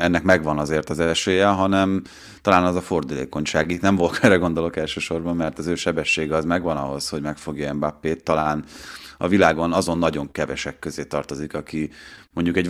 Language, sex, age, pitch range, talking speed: Hungarian, male, 30-49, 80-90 Hz, 175 wpm